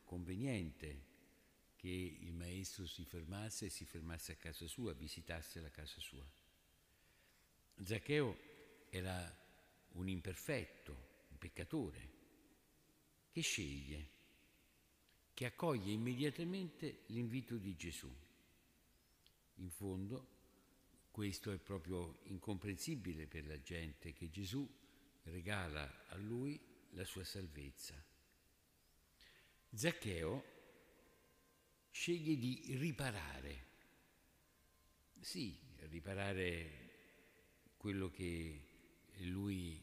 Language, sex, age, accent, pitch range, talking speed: Italian, male, 60-79, native, 80-110 Hz, 85 wpm